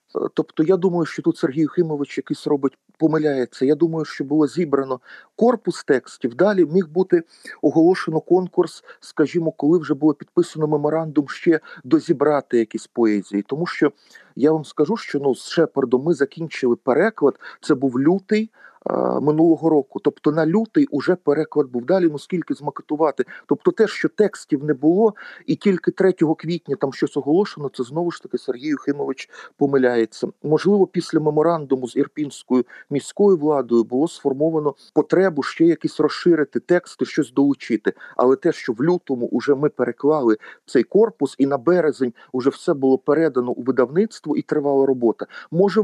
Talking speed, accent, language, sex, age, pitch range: 155 wpm, native, Ukrainian, male, 40-59, 140-175 Hz